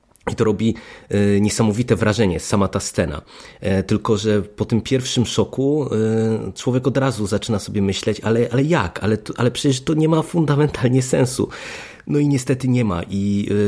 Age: 30-49